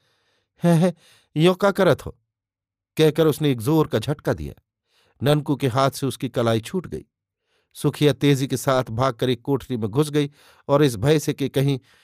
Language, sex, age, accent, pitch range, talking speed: Hindi, male, 50-69, native, 130-155 Hz, 180 wpm